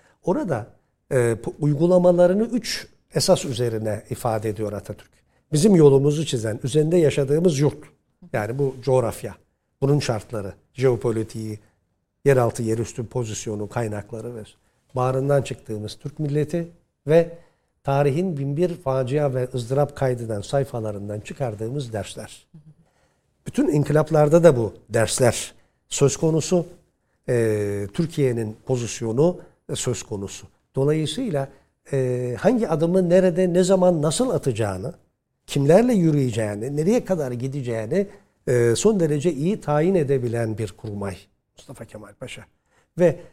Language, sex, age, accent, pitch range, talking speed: Turkish, male, 60-79, native, 115-155 Hz, 110 wpm